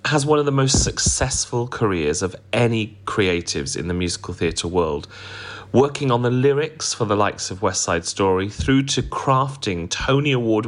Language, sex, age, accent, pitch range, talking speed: English, male, 30-49, British, 95-115 Hz, 175 wpm